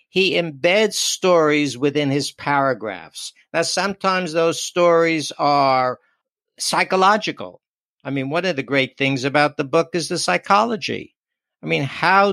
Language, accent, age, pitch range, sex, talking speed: English, American, 60-79, 145-180 Hz, male, 135 wpm